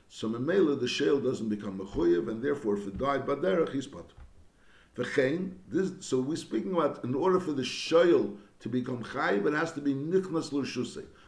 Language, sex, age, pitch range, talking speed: English, male, 60-79, 110-145 Hz, 180 wpm